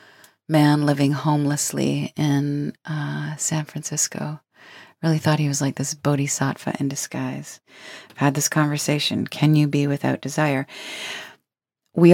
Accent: American